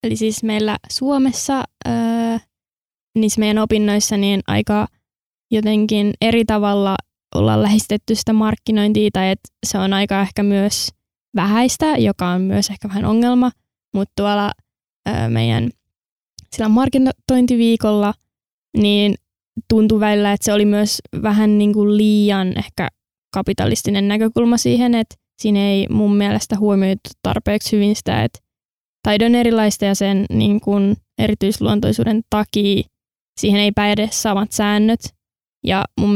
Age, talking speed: 20-39, 125 wpm